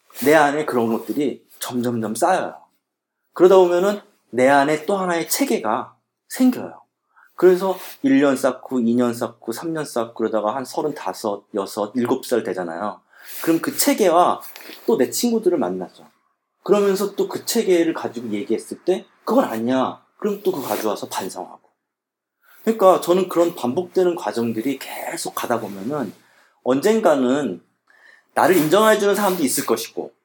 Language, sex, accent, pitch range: Korean, male, native, 125-195 Hz